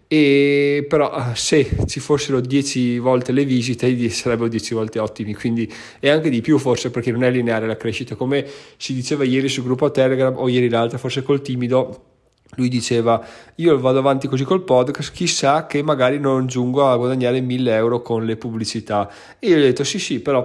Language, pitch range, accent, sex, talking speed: Italian, 115-130 Hz, native, male, 195 wpm